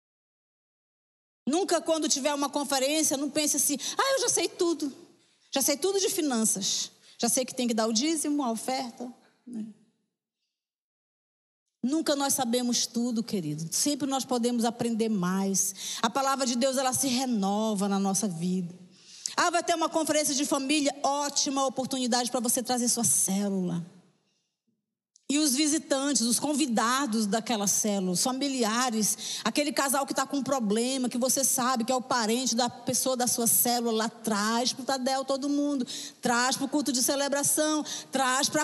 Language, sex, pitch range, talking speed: Portuguese, female, 225-290 Hz, 160 wpm